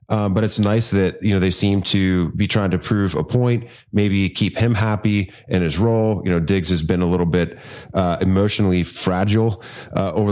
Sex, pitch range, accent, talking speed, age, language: male, 90-105 Hz, American, 210 wpm, 30-49, English